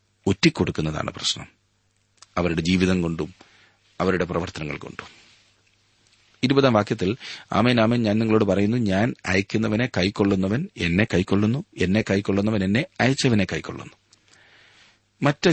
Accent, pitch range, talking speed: native, 95-115 Hz, 95 wpm